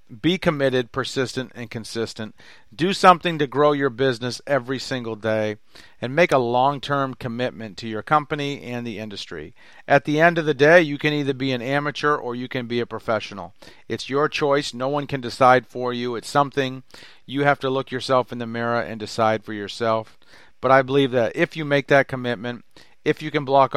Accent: American